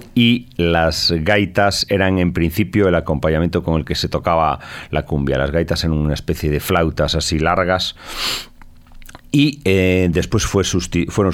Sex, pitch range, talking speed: male, 85-110 Hz, 150 wpm